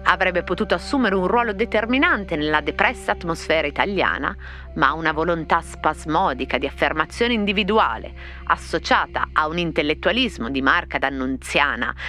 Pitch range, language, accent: 140-215 Hz, Italian, native